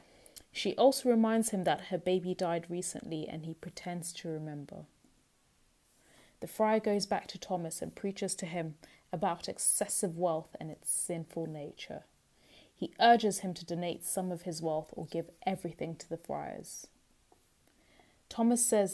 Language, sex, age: English, female, 20-39